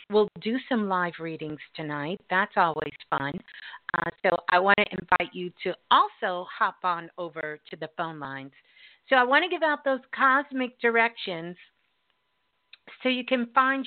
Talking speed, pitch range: 165 wpm, 170-245 Hz